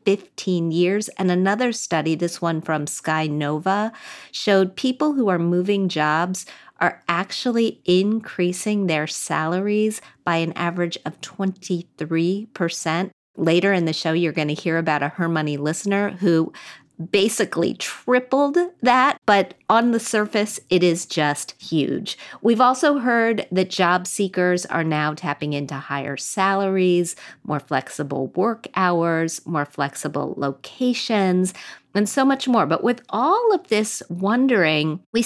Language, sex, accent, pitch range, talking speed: English, female, American, 165-220 Hz, 140 wpm